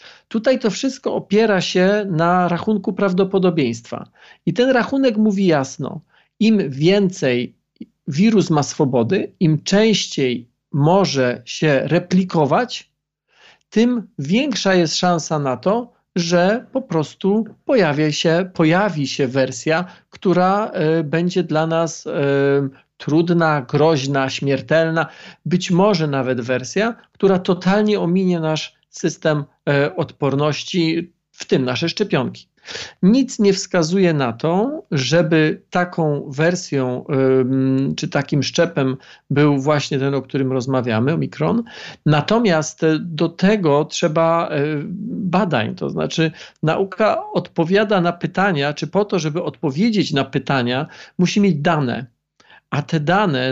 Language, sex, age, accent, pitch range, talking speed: Polish, male, 40-59, native, 145-190 Hz, 110 wpm